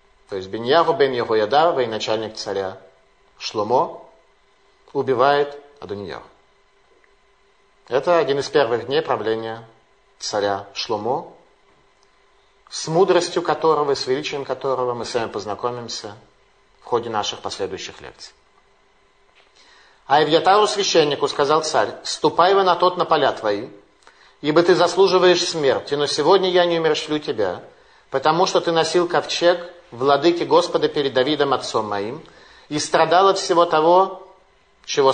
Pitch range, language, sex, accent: 135-185 Hz, Russian, male, native